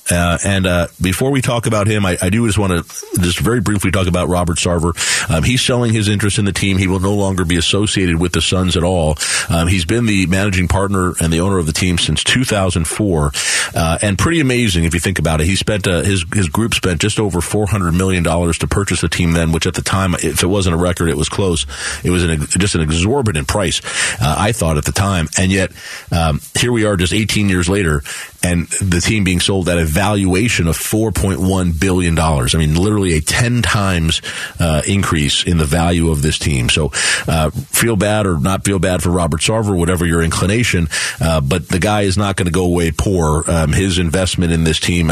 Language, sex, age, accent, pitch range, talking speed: English, male, 40-59, American, 85-100 Hz, 225 wpm